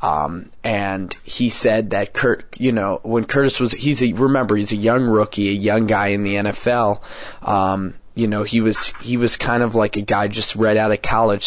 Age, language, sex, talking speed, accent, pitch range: 20-39, English, male, 215 wpm, American, 100-115 Hz